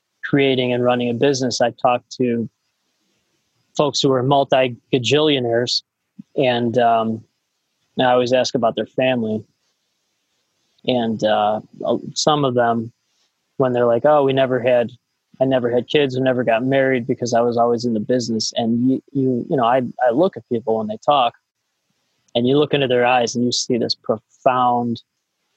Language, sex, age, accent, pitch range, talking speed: English, male, 20-39, American, 115-135 Hz, 170 wpm